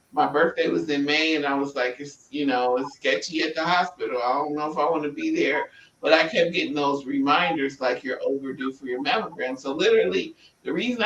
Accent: American